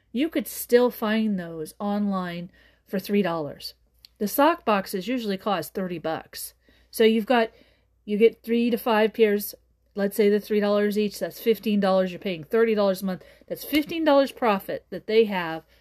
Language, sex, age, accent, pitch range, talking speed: English, female, 40-59, American, 195-230 Hz, 160 wpm